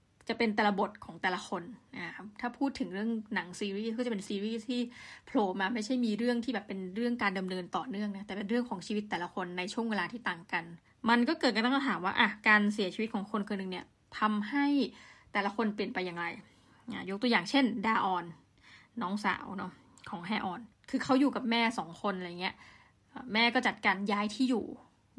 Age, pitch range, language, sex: 20-39, 195-240 Hz, Thai, female